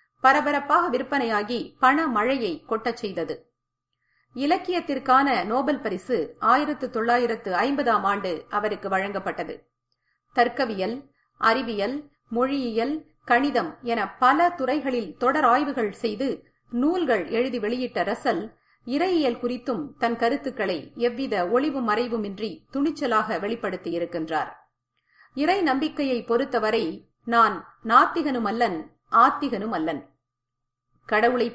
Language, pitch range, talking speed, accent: Tamil, 215-275 Hz, 85 wpm, native